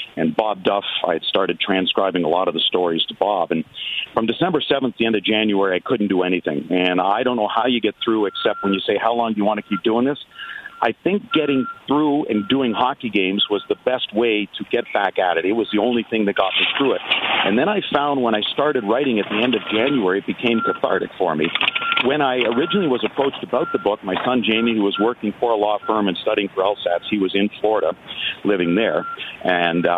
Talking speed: 245 wpm